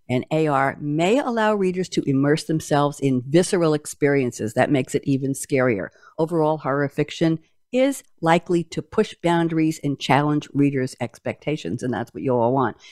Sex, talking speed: female, 160 wpm